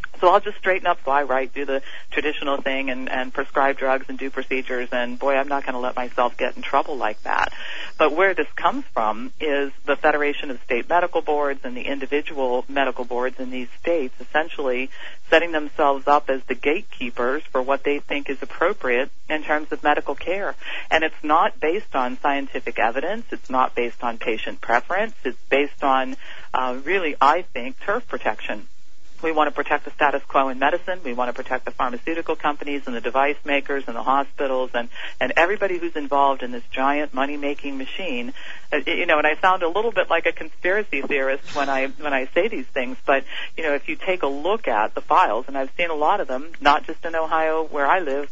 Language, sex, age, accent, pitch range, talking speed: English, female, 40-59, American, 130-155 Hz, 210 wpm